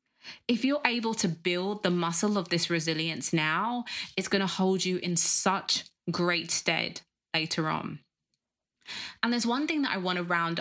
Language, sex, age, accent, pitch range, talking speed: English, female, 20-39, British, 175-230 Hz, 175 wpm